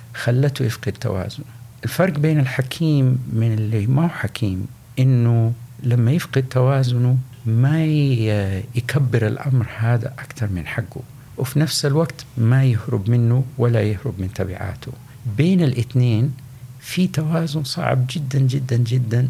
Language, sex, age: Arabic, male, 60-79